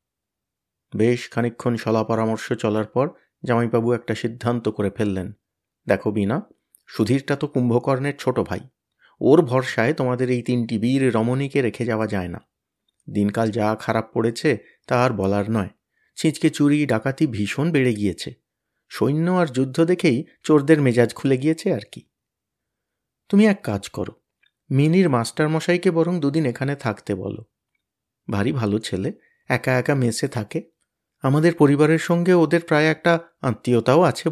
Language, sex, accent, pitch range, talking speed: Bengali, male, native, 110-150 Hz, 140 wpm